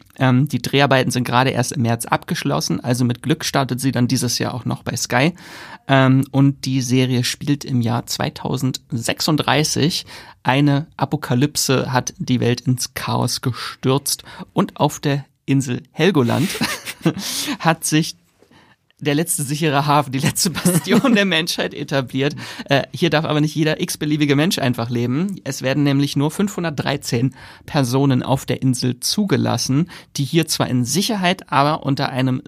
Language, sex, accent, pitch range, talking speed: German, male, German, 125-150 Hz, 150 wpm